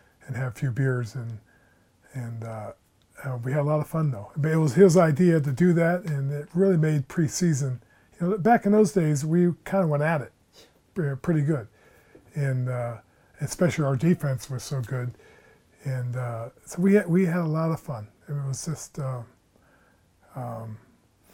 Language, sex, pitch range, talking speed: English, male, 125-165 Hz, 190 wpm